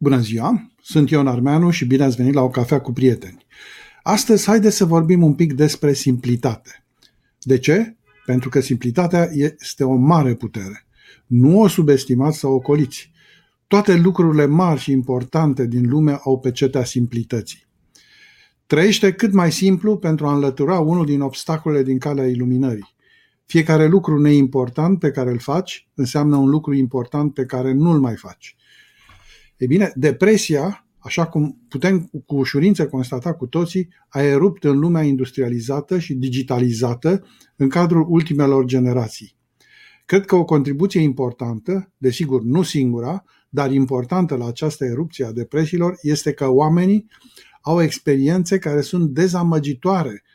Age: 50-69